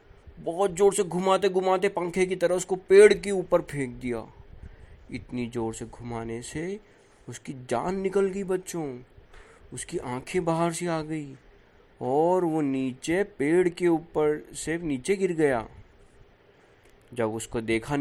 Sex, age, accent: male, 20-39, native